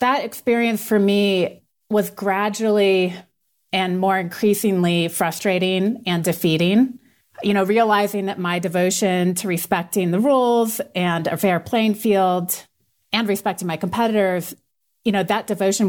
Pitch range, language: 180-210 Hz, English